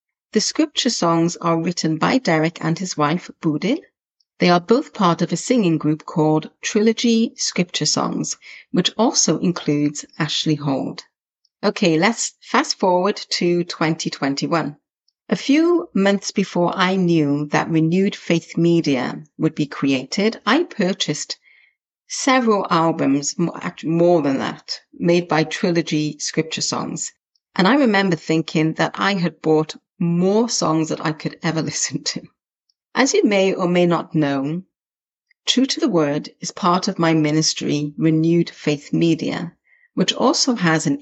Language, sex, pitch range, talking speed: English, female, 155-205 Hz, 145 wpm